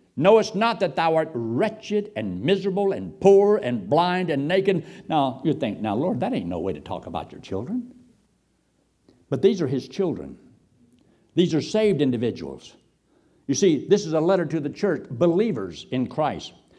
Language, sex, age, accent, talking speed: English, male, 60-79, American, 175 wpm